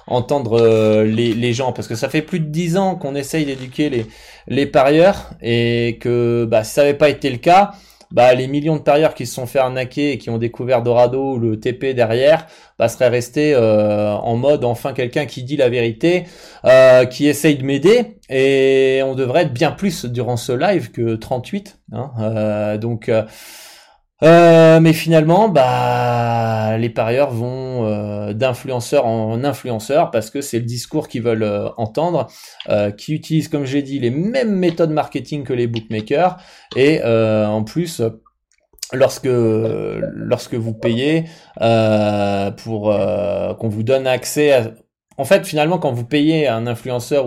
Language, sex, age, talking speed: French, male, 20-39, 175 wpm